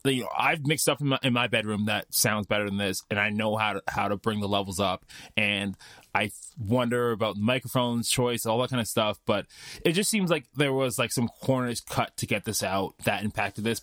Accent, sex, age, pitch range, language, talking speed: American, male, 20-39, 105-135 Hz, English, 240 wpm